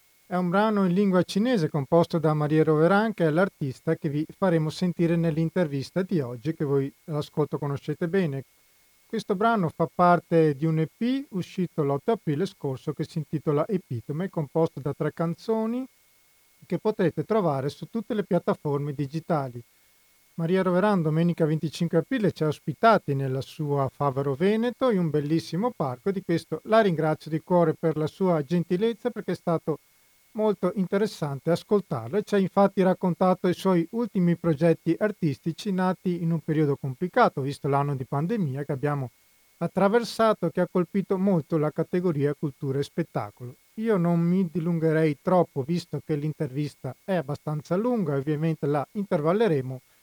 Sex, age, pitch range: male, 40-59, 150-190 Hz